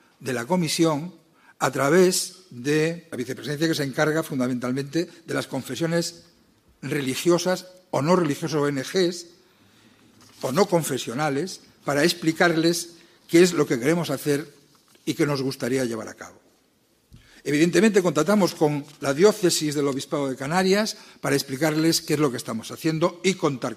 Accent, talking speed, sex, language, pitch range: Spanish, 145 wpm, male, Spanish, 135-175 Hz